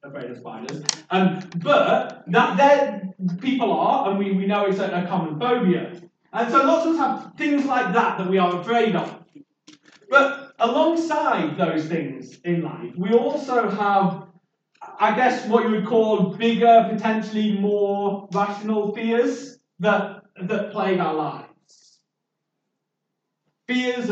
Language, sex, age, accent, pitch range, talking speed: English, male, 30-49, British, 185-230 Hz, 145 wpm